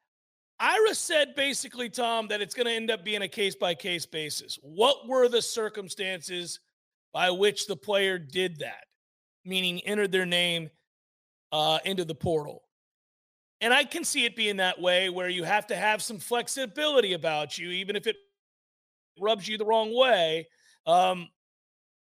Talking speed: 160 wpm